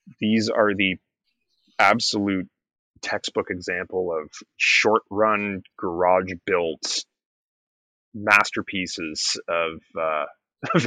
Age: 30-49